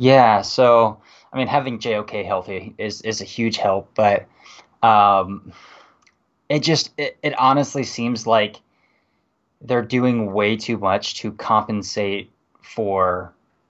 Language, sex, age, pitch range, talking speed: English, male, 20-39, 110-135 Hz, 125 wpm